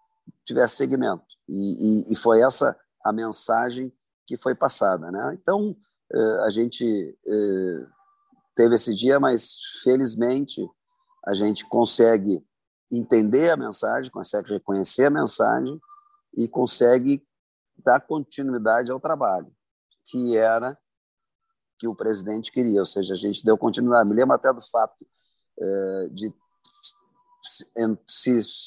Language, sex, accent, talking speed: Portuguese, male, Brazilian, 120 wpm